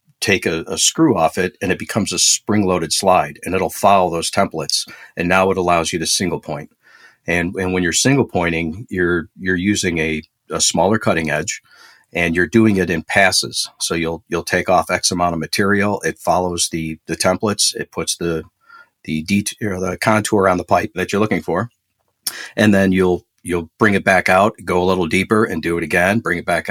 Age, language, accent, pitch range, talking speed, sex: 50-69, English, American, 80-100 Hz, 205 wpm, male